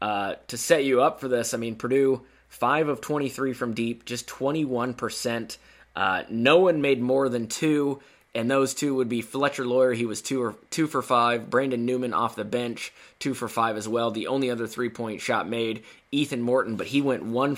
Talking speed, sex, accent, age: 205 wpm, male, American, 20-39